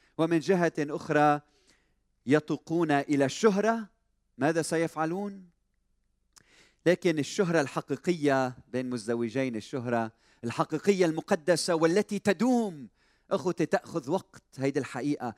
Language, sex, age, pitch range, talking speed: Arabic, male, 40-59, 145-210 Hz, 90 wpm